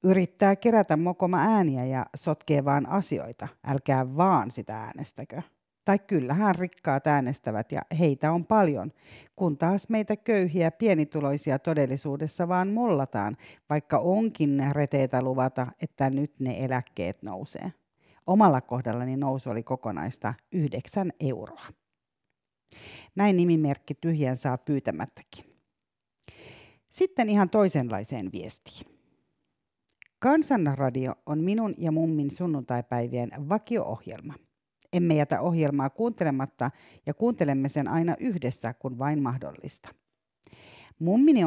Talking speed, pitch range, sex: 105 wpm, 130-180 Hz, female